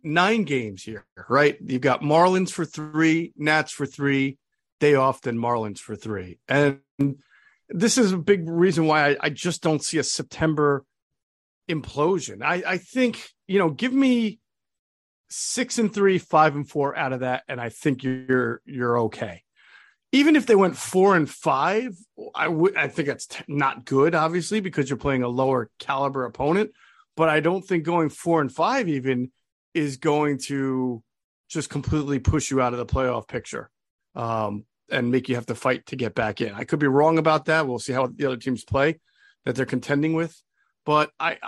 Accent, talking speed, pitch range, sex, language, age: American, 185 wpm, 130-160 Hz, male, English, 40-59